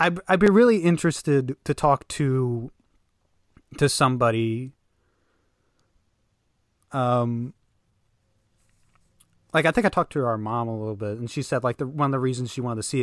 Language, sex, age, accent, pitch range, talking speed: English, male, 30-49, American, 110-135 Hz, 155 wpm